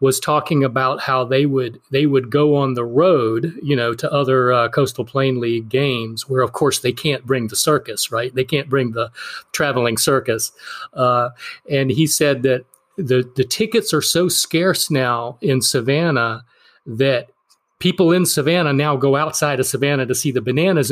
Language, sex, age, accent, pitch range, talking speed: English, male, 40-59, American, 130-155 Hz, 180 wpm